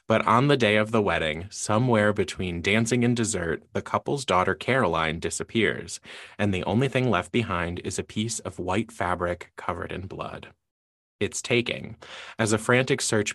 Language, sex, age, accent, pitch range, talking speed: English, male, 20-39, American, 90-115 Hz, 170 wpm